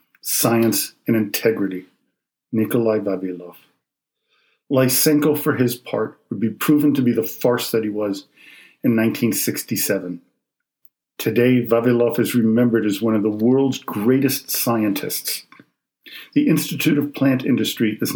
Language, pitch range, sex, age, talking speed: English, 105-140 Hz, male, 50-69, 125 wpm